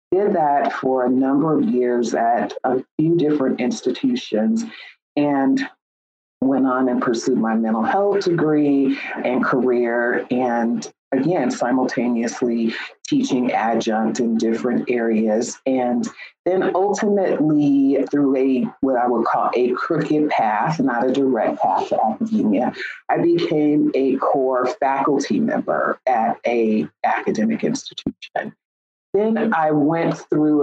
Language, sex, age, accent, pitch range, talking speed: English, female, 40-59, American, 125-155 Hz, 125 wpm